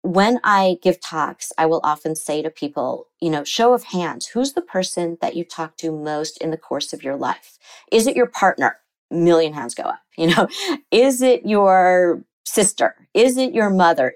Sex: female